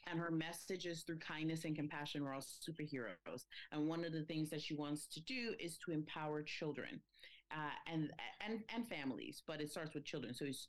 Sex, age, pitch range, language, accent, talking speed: female, 30-49, 140-170 Hz, English, American, 210 wpm